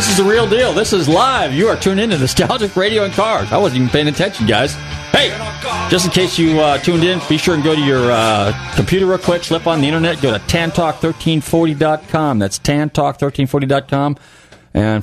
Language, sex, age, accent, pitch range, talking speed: English, male, 40-59, American, 115-160 Hz, 200 wpm